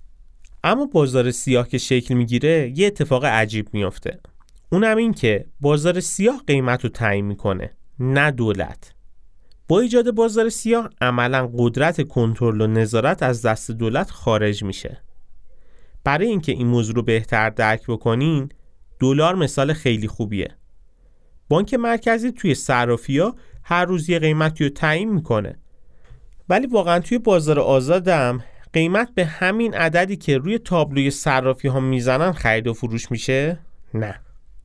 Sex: male